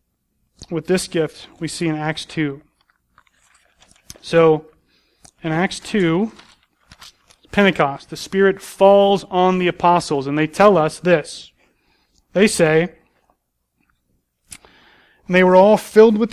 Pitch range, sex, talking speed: 160-185 Hz, male, 115 wpm